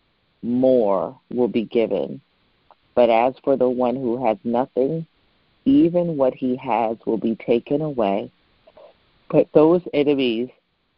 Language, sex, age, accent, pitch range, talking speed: English, female, 40-59, American, 110-125 Hz, 125 wpm